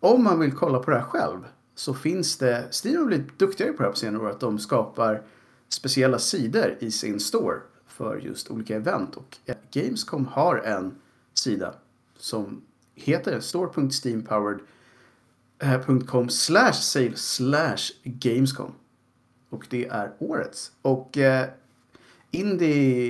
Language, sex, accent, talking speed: Swedish, male, Norwegian, 125 wpm